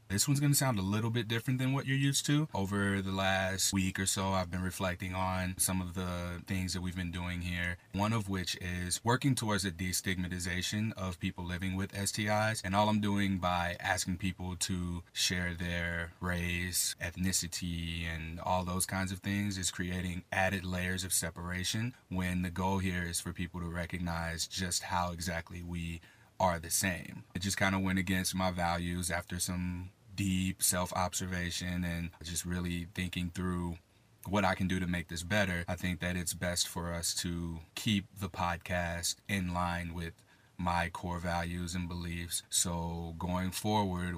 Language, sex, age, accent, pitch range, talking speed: English, male, 30-49, American, 85-95 Hz, 180 wpm